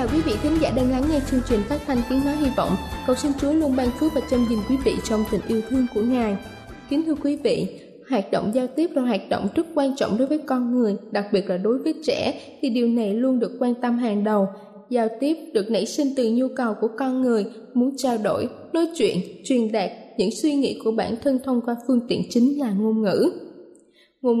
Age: 10-29